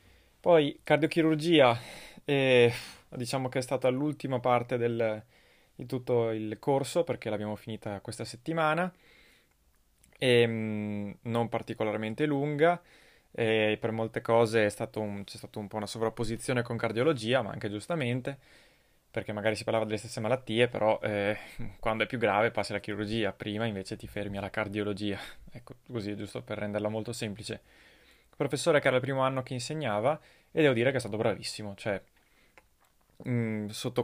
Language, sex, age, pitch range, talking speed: Italian, male, 20-39, 110-130 Hz, 155 wpm